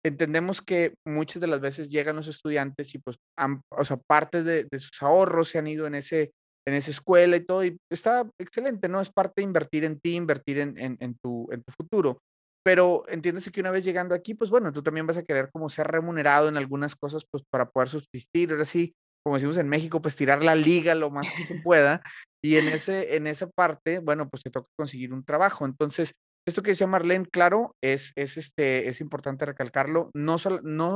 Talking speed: 220 wpm